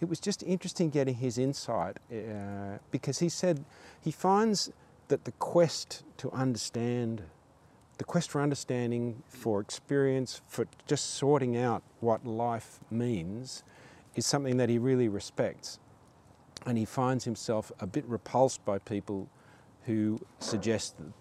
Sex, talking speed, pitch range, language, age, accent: male, 135 wpm, 105-140 Hz, English, 40-59, Australian